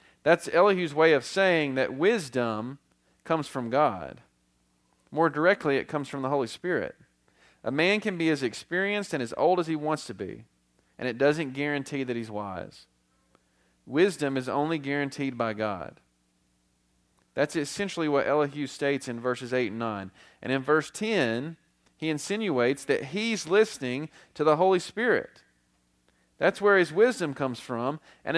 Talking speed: 160 wpm